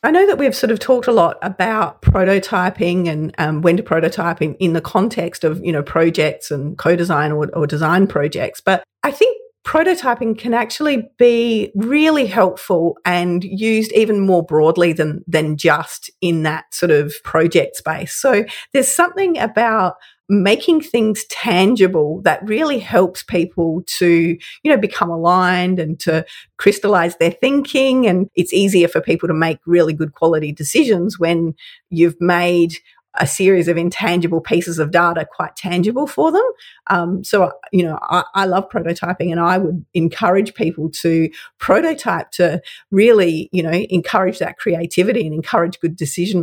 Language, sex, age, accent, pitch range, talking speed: English, female, 40-59, Australian, 165-215 Hz, 160 wpm